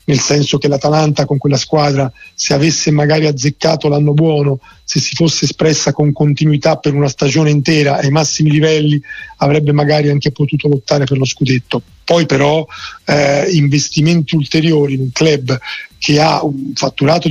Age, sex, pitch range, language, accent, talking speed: 40-59, male, 140-155 Hz, Italian, native, 160 wpm